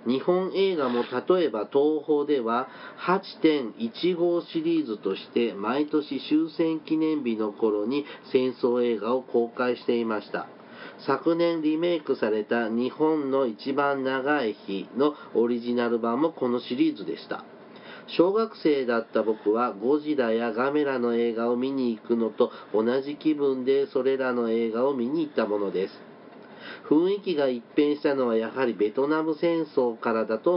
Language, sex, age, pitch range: Japanese, male, 40-59, 120-155 Hz